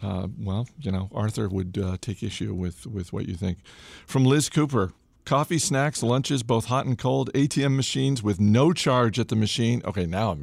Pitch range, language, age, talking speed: 95-120 Hz, English, 50-69, 200 wpm